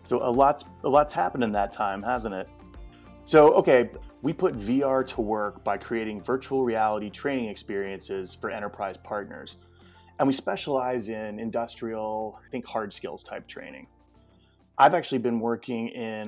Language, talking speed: English, 160 wpm